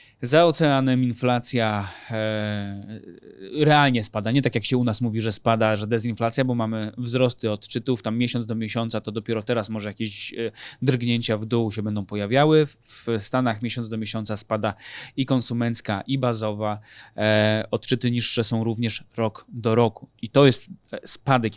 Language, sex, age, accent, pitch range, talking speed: Polish, male, 20-39, native, 110-130 Hz, 160 wpm